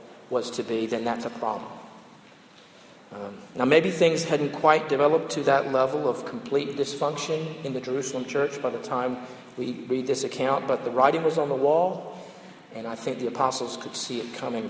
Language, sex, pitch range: English, male, 120-155 Hz